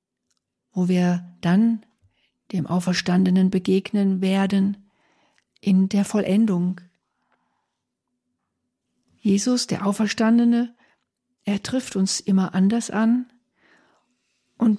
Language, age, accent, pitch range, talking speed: German, 50-69, German, 195-230 Hz, 80 wpm